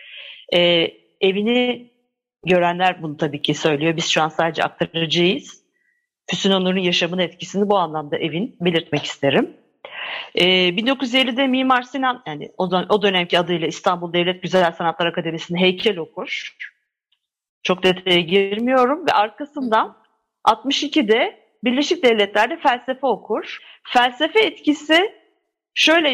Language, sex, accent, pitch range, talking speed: Turkish, female, native, 180-270 Hz, 110 wpm